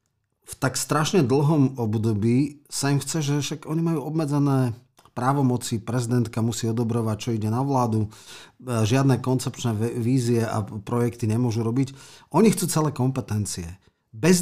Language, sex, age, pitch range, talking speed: Slovak, male, 40-59, 110-140 Hz, 135 wpm